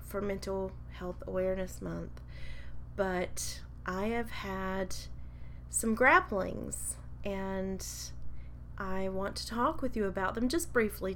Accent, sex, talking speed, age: American, female, 120 wpm, 30-49